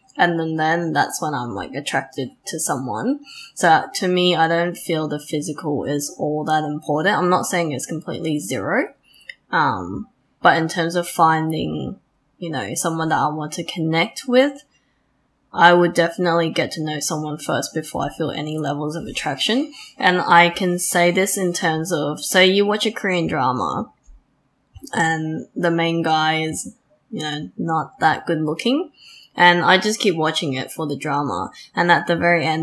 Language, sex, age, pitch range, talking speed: English, female, 10-29, 155-180 Hz, 180 wpm